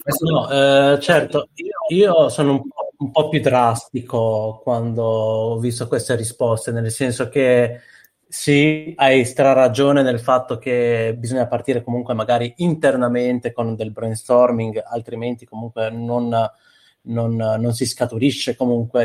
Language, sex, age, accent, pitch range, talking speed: Italian, male, 20-39, native, 115-140 Hz, 140 wpm